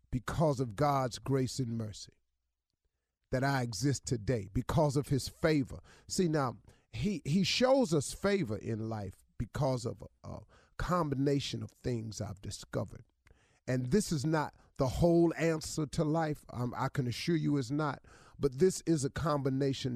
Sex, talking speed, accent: male, 160 wpm, American